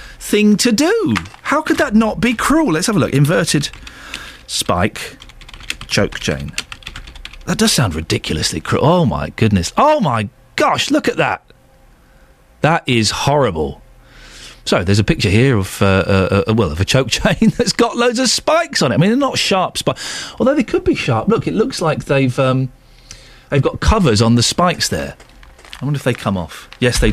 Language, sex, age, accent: English, male, 40-59, British